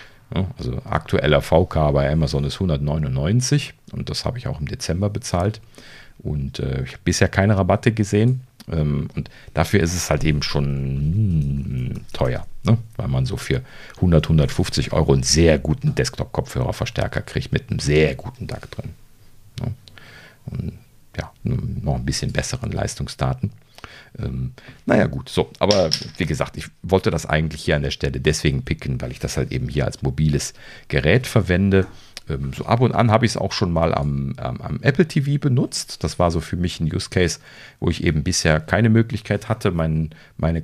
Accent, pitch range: German, 75-110 Hz